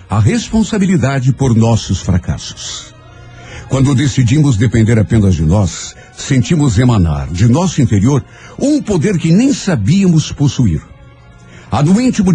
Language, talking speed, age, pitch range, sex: Portuguese, 120 wpm, 60-79, 105-150 Hz, male